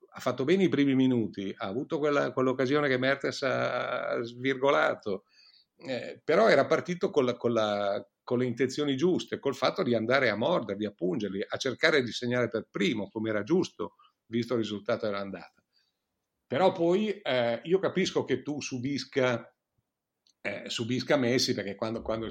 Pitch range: 110-135 Hz